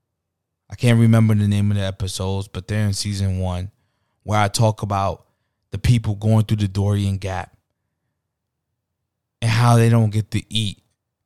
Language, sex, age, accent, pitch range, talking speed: English, male, 20-39, American, 95-115 Hz, 165 wpm